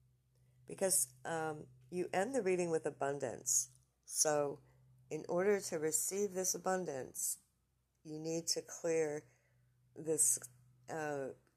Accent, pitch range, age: American, 125-160 Hz, 60-79